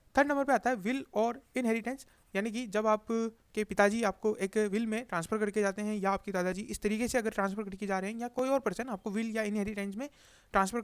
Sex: male